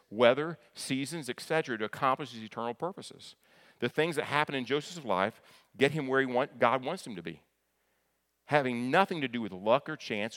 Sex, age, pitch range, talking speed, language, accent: male, 40-59, 100-135 Hz, 190 wpm, English, American